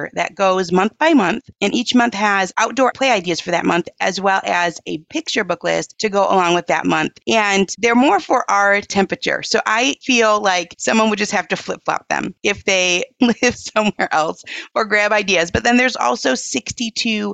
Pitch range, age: 190-250 Hz, 30-49